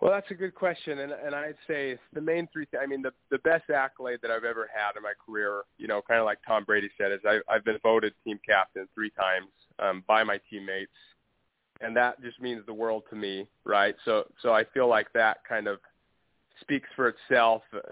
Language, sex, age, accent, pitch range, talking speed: English, male, 20-39, American, 105-125 Hz, 225 wpm